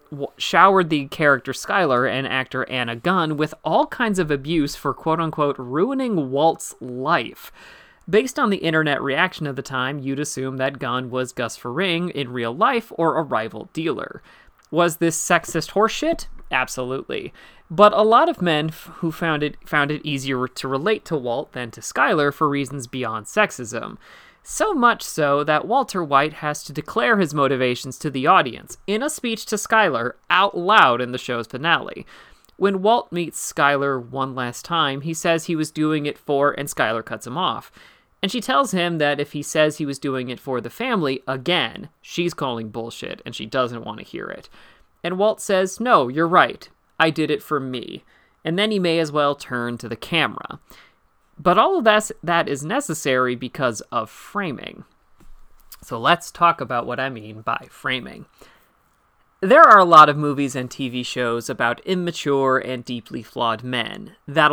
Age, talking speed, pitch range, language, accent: 30-49, 180 wpm, 130-175 Hz, English, American